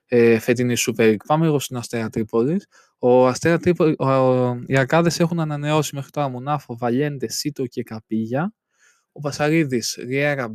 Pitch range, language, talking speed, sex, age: 125-155 Hz, Greek, 120 wpm, male, 20-39